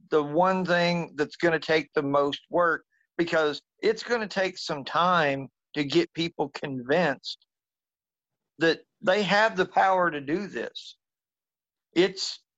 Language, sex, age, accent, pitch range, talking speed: English, male, 50-69, American, 150-205 Hz, 135 wpm